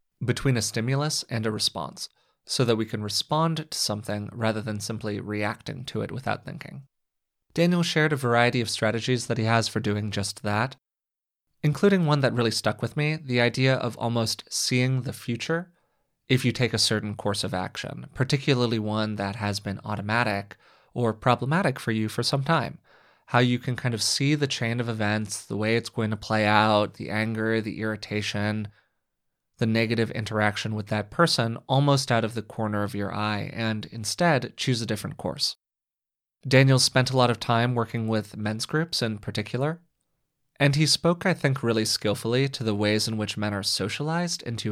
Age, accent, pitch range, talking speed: 20-39, American, 105-130 Hz, 185 wpm